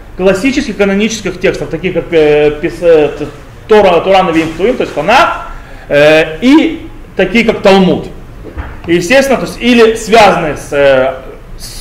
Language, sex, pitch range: Russian, male, 155-230 Hz